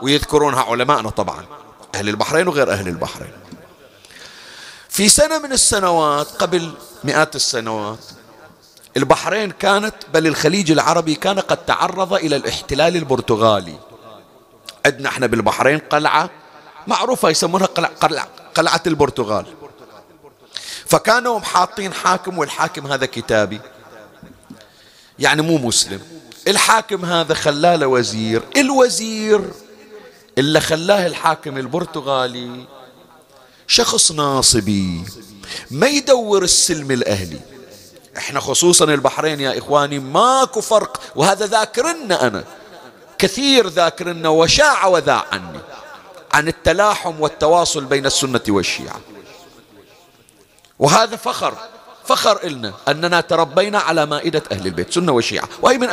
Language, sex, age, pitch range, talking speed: Arabic, male, 40-59, 135-195 Hz, 100 wpm